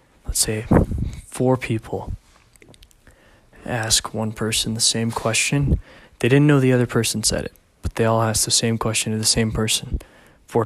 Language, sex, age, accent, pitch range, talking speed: English, male, 20-39, American, 110-120 Hz, 170 wpm